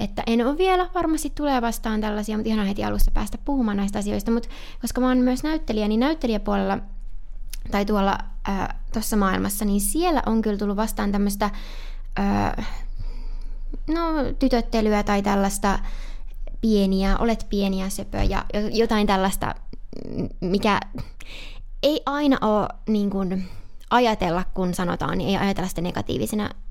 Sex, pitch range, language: female, 190-235 Hz, Finnish